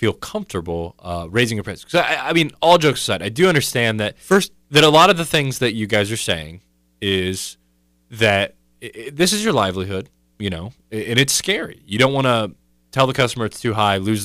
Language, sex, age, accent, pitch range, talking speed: English, male, 20-39, American, 90-135 Hz, 210 wpm